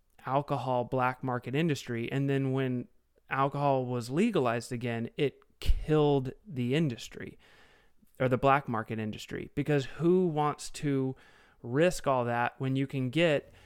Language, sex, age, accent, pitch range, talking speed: English, male, 30-49, American, 115-135 Hz, 135 wpm